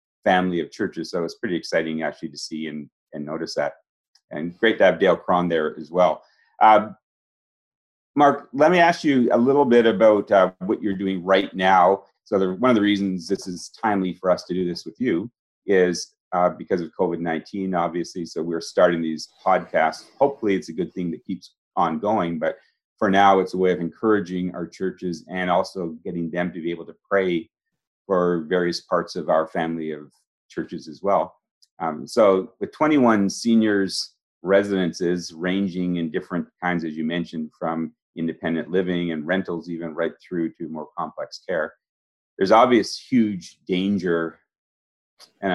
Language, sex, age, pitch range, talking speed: English, male, 40-59, 80-95 Hz, 175 wpm